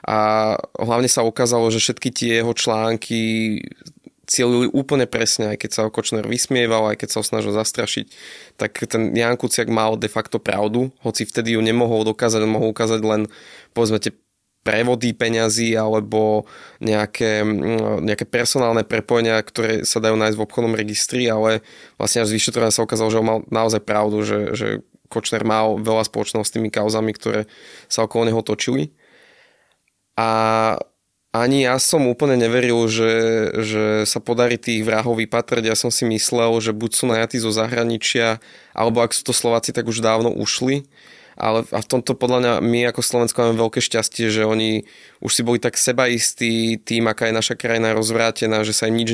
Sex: male